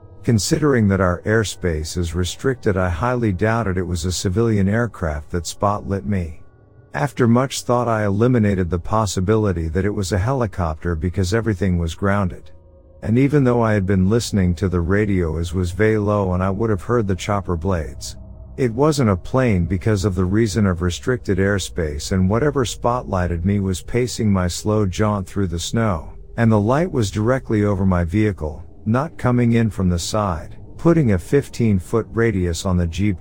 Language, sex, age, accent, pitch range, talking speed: English, male, 50-69, American, 90-115 Hz, 180 wpm